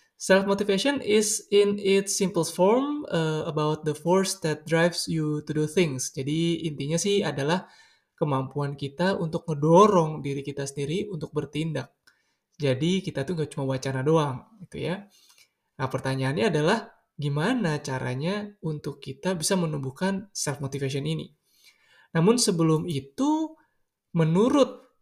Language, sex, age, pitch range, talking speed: Indonesian, male, 20-39, 150-195 Hz, 125 wpm